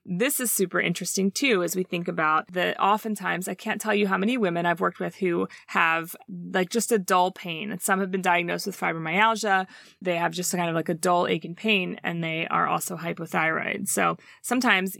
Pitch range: 175-205 Hz